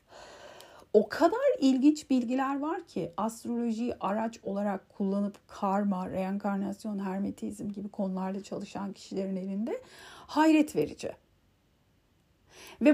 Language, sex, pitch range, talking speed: Turkish, female, 200-270 Hz, 95 wpm